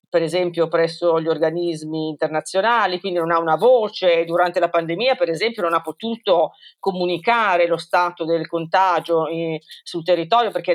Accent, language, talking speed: native, Italian, 155 wpm